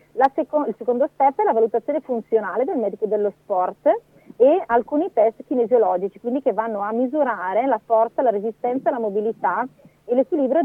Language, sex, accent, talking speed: Italian, female, native, 170 wpm